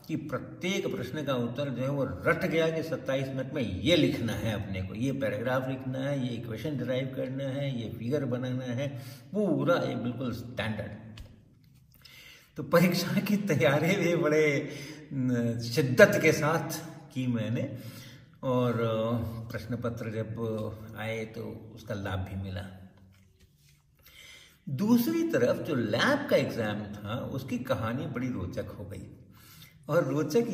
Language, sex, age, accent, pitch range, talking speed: Hindi, male, 60-79, native, 115-155 Hz, 140 wpm